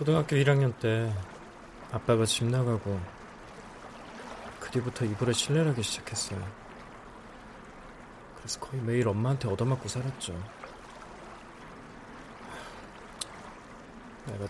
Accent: native